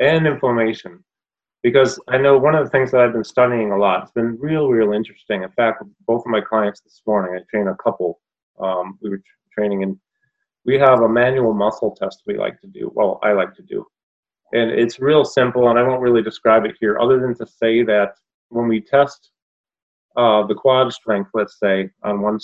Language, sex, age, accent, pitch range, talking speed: English, male, 30-49, American, 105-125 Hz, 210 wpm